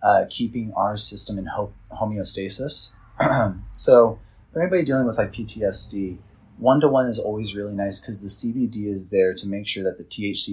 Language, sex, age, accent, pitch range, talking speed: English, male, 30-49, American, 95-110 Hz, 165 wpm